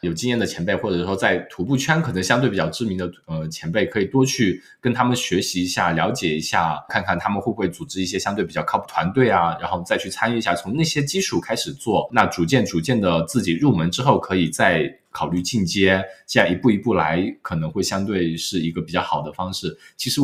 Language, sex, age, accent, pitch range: Chinese, male, 20-39, native, 90-120 Hz